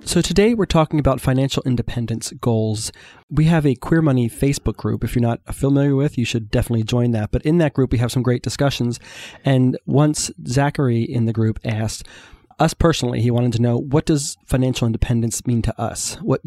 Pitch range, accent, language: 115-140 Hz, American, English